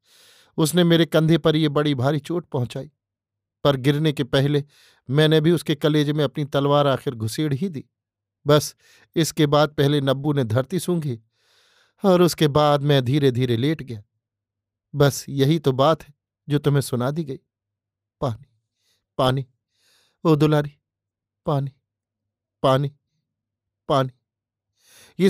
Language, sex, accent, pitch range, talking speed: Hindi, male, native, 115-150 Hz, 140 wpm